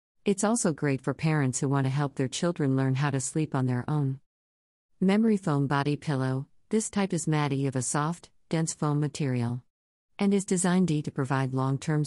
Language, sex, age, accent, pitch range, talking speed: English, female, 50-69, American, 130-165 Hz, 190 wpm